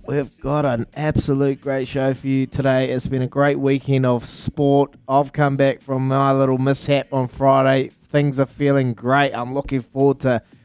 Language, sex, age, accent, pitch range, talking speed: English, male, 20-39, Australian, 120-140 Hz, 185 wpm